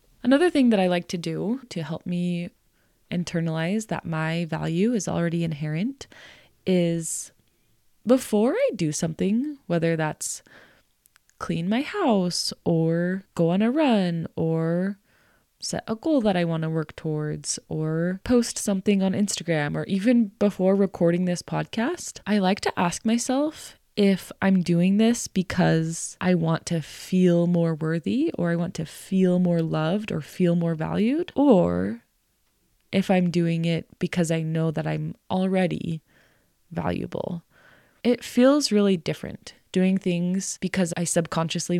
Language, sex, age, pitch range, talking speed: English, female, 20-39, 165-200 Hz, 145 wpm